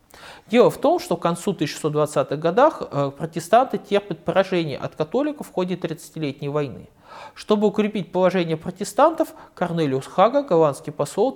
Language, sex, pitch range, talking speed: Russian, male, 145-210 Hz, 130 wpm